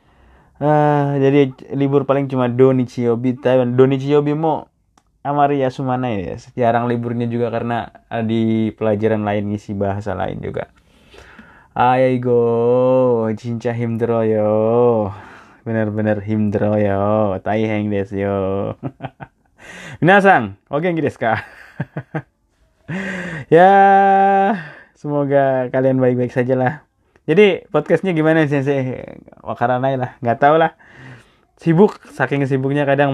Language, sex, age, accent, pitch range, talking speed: Indonesian, male, 20-39, native, 110-140 Hz, 100 wpm